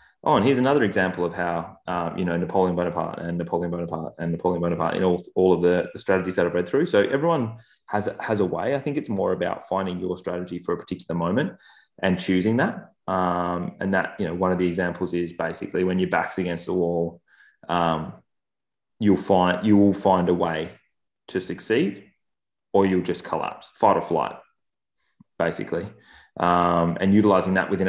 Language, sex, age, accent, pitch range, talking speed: English, male, 20-39, Australian, 85-95 Hz, 185 wpm